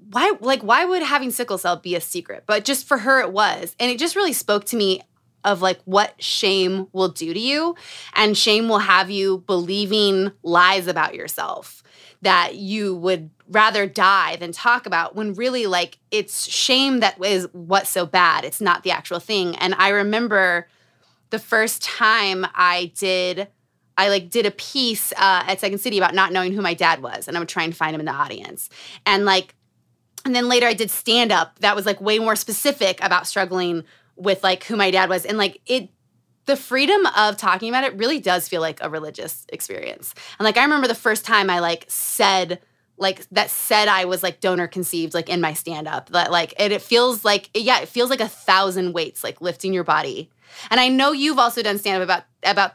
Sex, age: female, 20-39